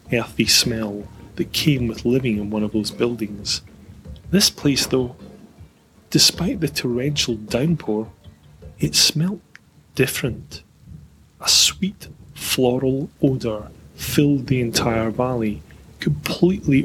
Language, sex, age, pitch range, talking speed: English, male, 30-49, 105-135 Hz, 105 wpm